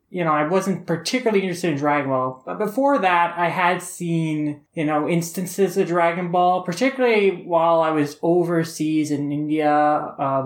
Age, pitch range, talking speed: 20-39, 140-170 Hz, 165 wpm